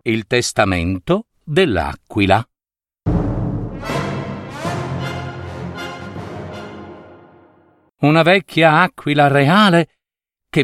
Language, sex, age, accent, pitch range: Italian, male, 50-69, native, 120-170 Hz